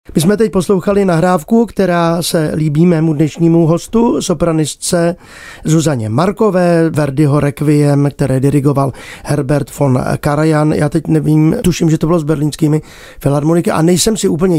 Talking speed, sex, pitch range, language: 145 wpm, male, 155-210 Hz, Czech